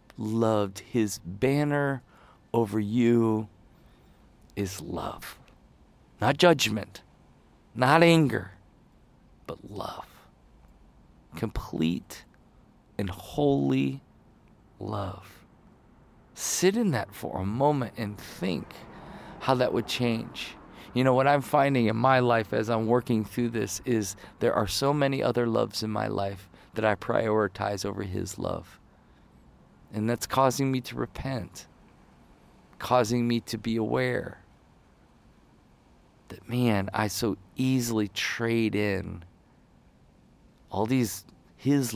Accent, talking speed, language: American, 115 wpm, English